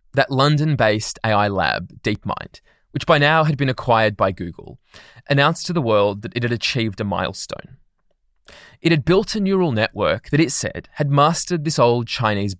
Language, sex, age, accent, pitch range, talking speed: English, male, 20-39, Australian, 110-150 Hz, 175 wpm